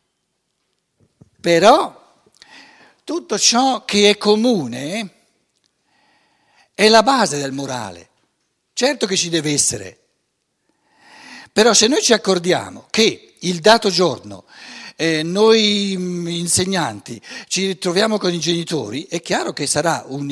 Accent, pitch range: native, 150-215 Hz